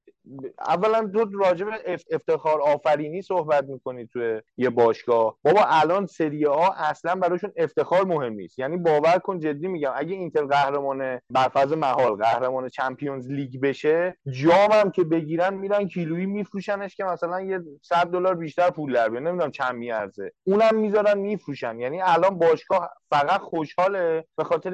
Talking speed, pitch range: 150 wpm, 140-195 Hz